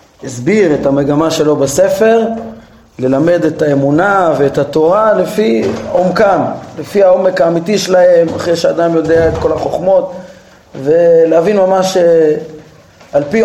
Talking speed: 115 wpm